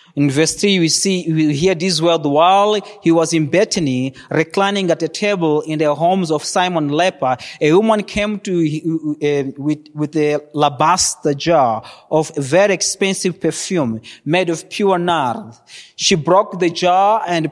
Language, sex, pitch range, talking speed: English, male, 150-180 Hz, 160 wpm